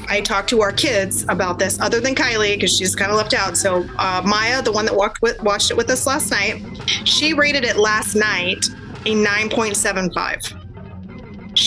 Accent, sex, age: American, female, 20-39